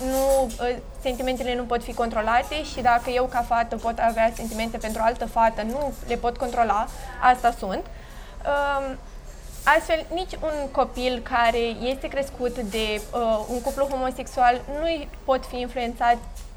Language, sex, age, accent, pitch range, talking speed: Romanian, female, 20-39, native, 235-275 Hz, 140 wpm